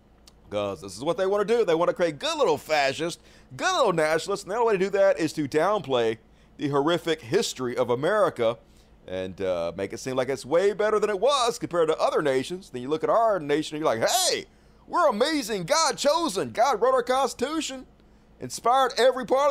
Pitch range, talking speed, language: 130-215 Hz, 215 wpm, English